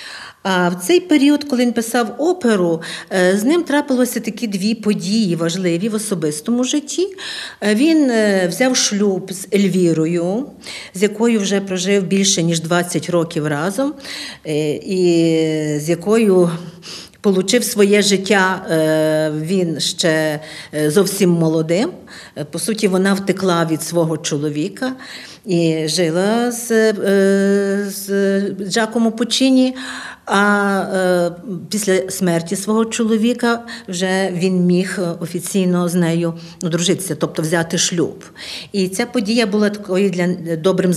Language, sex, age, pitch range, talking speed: Ukrainian, female, 50-69, 170-220 Hz, 115 wpm